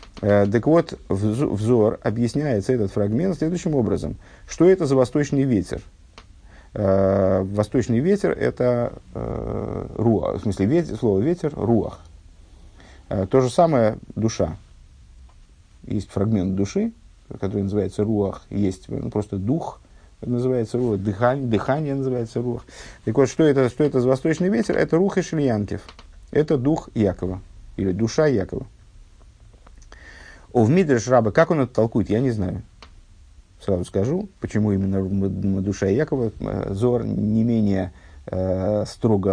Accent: native